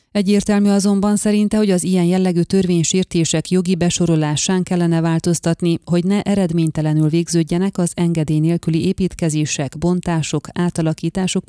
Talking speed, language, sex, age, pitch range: 115 wpm, Hungarian, female, 30-49, 160-185 Hz